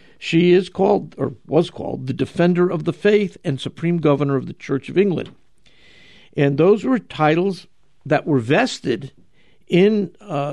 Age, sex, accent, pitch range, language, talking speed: 60-79, male, American, 140-185 Hz, English, 160 wpm